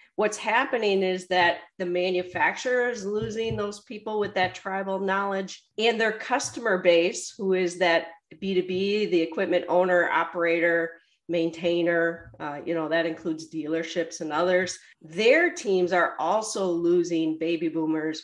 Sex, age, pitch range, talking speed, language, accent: female, 40-59, 170-210 Hz, 140 wpm, English, American